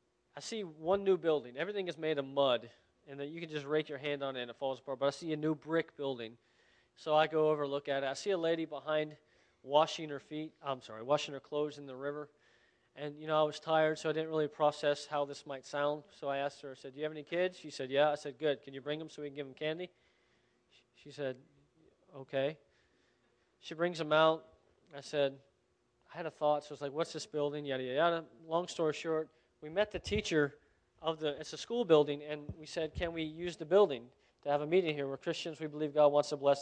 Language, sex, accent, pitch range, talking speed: English, male, American, 140-160 Hz, 250 wpm